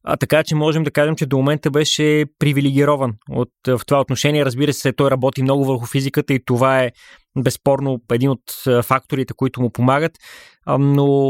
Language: Bulgarian